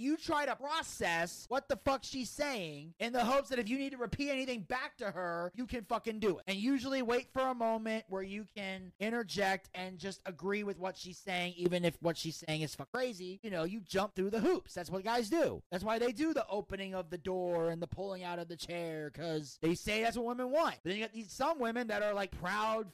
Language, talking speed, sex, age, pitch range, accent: English, 250 wpm, male, 30-49, 190-270 Hz, American